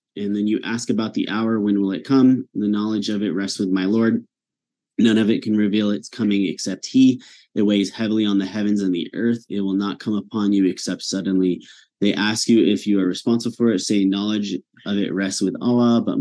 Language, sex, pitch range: English, male, 95-110 Hz